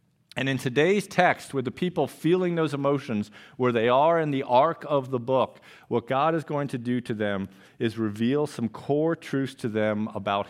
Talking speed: 200 wpm